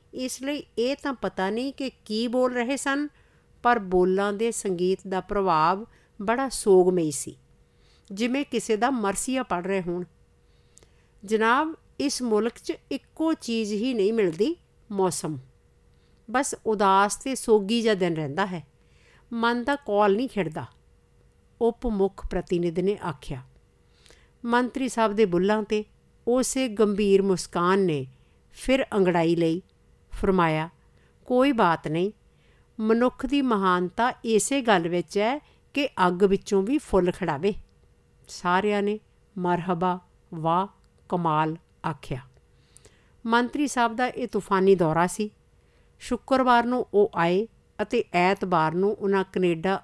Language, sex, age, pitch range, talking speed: Punjabi, female, 50-69, 175-235 Hz, 115 wpm